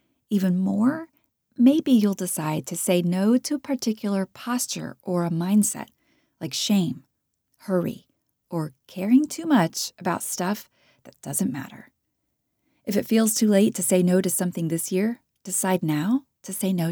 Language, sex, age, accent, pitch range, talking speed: English, female, 30-49, American, 180-240 Hz, 155 wpm